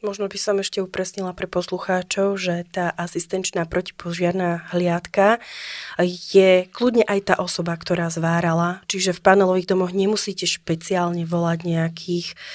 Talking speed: 130 wpm